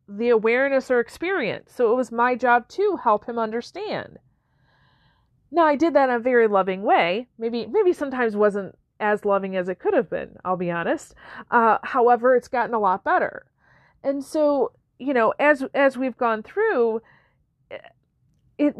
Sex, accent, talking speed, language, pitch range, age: female, American, 170 wpm, English, 195-275 Hz, 40-59